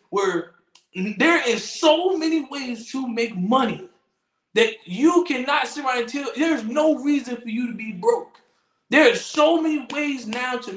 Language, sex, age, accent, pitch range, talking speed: English, male, 20-39, American, 220-300 Hz, 175 wpm